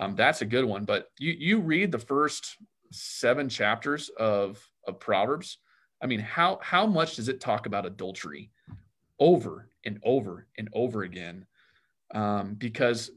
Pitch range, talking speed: 110-145 Hz, 155 wpm